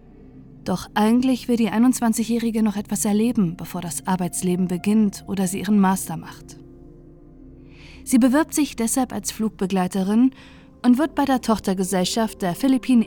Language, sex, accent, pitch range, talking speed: German, female, German, 180-230 Hz, 140 wpm